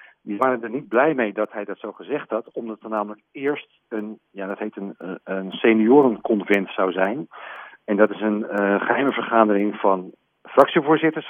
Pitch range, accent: 105-135 Hz, Dutch